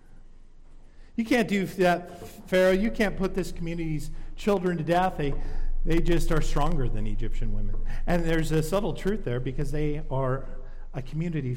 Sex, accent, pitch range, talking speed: male, American, 130-195 Hz, 165 wpm